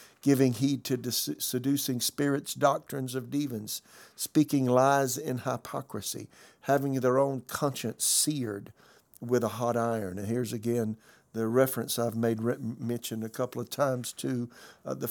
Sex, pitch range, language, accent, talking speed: male, 120-135 Hz, English, American, 145 wpm